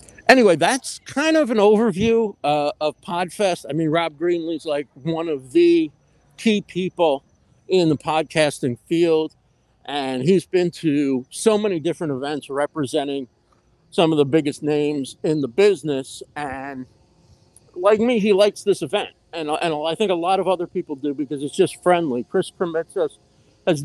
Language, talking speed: English, 160 wpm